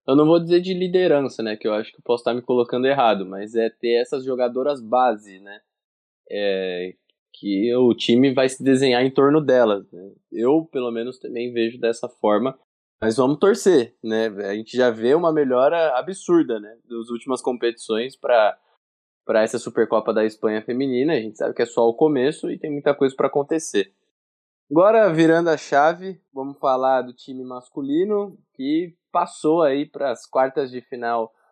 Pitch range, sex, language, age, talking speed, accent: 120-160 Hz, male, Portuguese, 20-39, 180 wpm, Brazilian